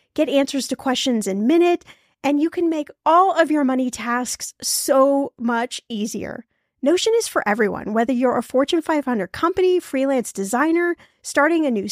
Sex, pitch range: female, 235-315 Hz